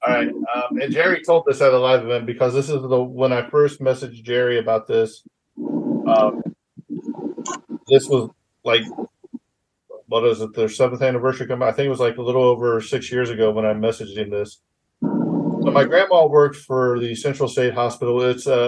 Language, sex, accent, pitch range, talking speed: English, male, American, 110-130 Hz, 195 wpm